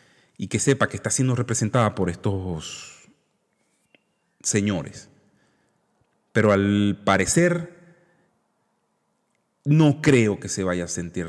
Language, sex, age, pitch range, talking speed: Spanish, male, 40-59, 95-135 Hz, 105 wpm